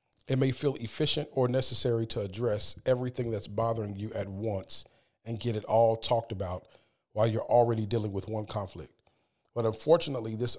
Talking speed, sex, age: 170 wpm, male, 40-59